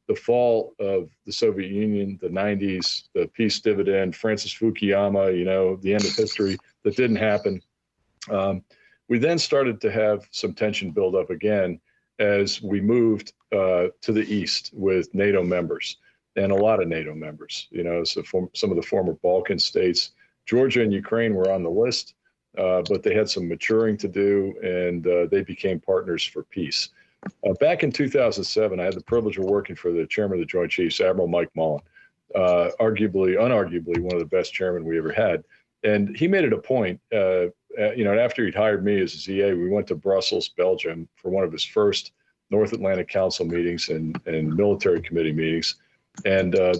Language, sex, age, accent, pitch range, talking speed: English, male, 40-59, American, 90-110 Hz, 190 wpm